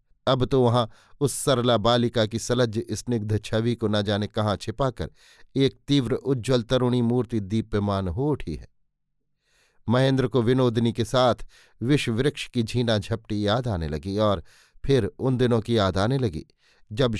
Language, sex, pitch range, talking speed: Hindi, male, 105-125 Hz, 165 wpm